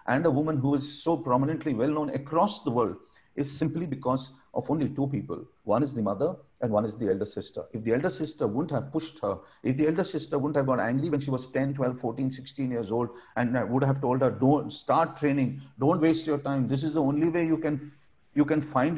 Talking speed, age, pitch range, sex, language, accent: 240 wpm, 50-69, 115-150 Hz, male, English, Indian